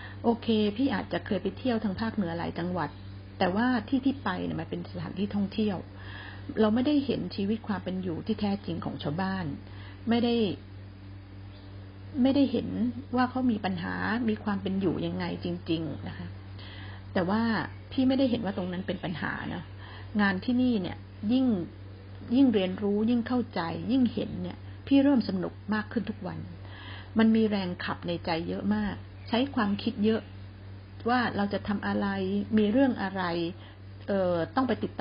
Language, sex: Thai, female